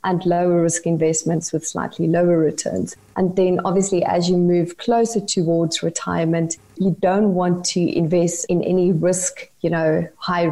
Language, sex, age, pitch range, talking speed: English, female, 30-49, 170-195 Hz, 160 wpm